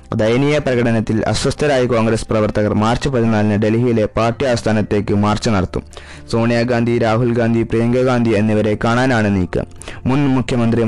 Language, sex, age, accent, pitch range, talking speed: Malayalam, male, 20-39, native, 110-130 Hz, 120 wpm